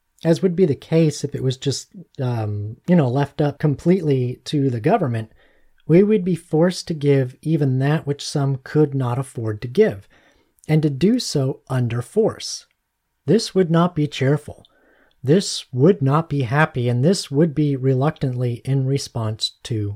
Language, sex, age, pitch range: English, male, 40-59, 130-170 Hz